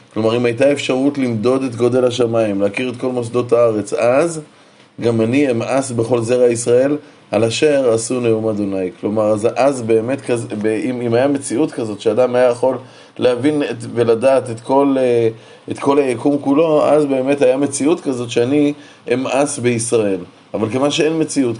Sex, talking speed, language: male, 155 wpm, Hebrew